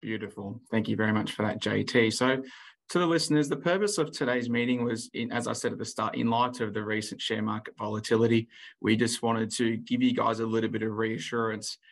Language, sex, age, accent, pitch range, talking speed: English, male, 20-39, Australian, 110-125 Hz, 225 wpm